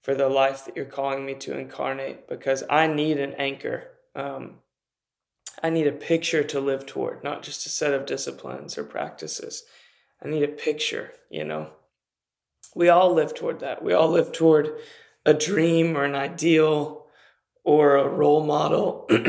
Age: 20-39